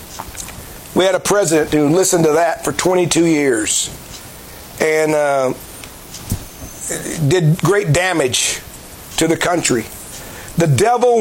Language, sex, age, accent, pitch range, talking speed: English, male, 50-69, American, 180-230 Hz, 110 wpm